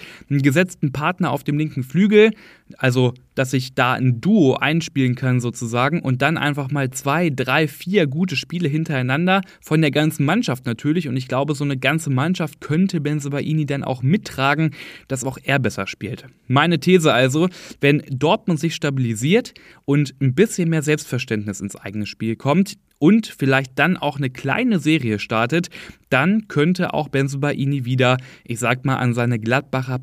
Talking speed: 165 wpm